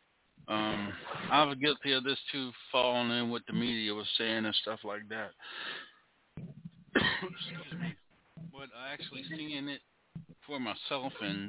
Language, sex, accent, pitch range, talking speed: English, male, American, 105-140 Hz, 135 wpm